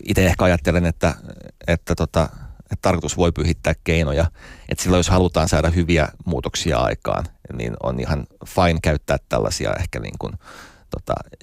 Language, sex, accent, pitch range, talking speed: Finnish, male, native, 70-85 Hz, 160 wpm